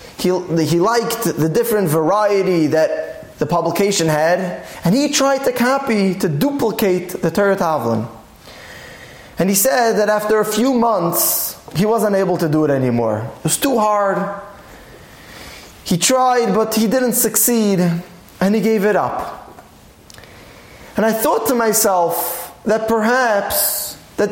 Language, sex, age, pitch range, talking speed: English, male, 20-39, 195-260 Hz, 140 wpm